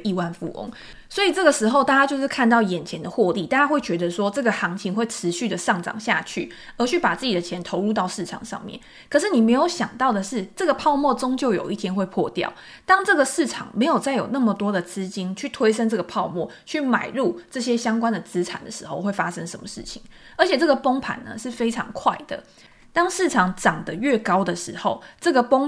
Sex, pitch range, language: female, 190-265 Hz, Chinese